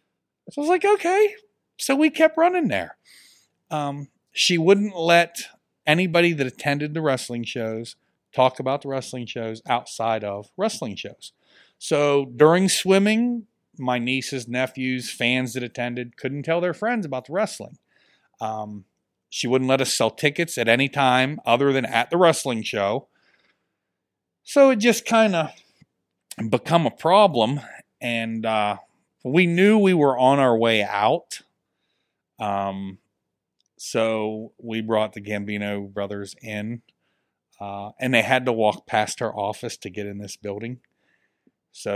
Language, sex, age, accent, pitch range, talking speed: English, male, 40-59, American, 105-145 Hz, 145 wpm